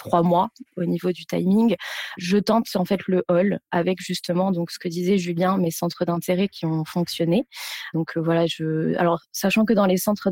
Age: 20-39